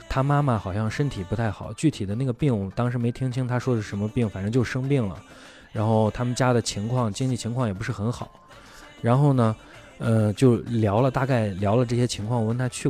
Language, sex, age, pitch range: Chinese, male, 20-39, 100-125 Hz